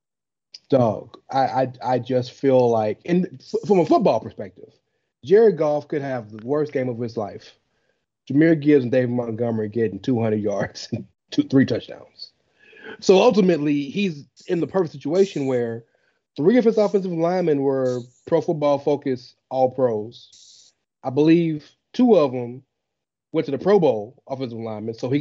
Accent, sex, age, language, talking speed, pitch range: American, male, 30-49, English, 160 wpm, 125-170 Hz